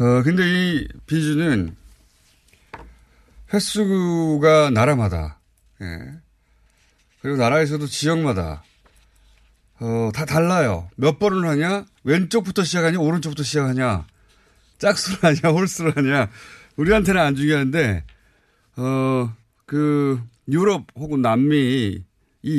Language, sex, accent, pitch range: Korean, male, native, 105-160 Hz